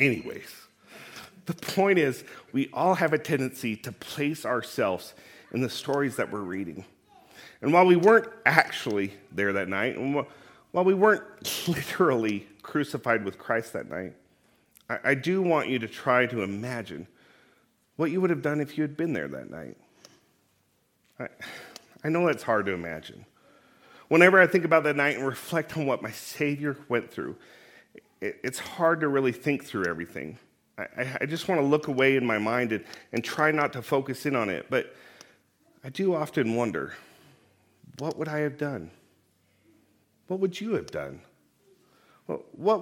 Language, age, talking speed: English, 40-59, 170 wpm